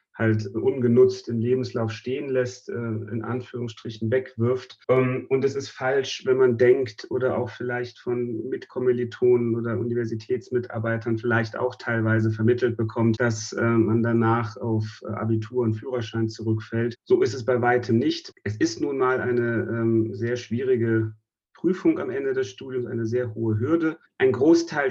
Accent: German